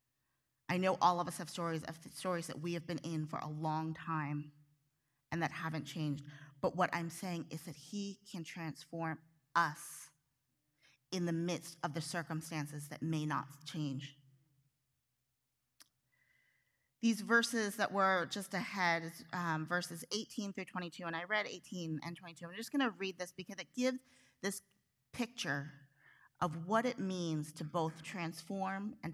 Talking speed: 160 wpm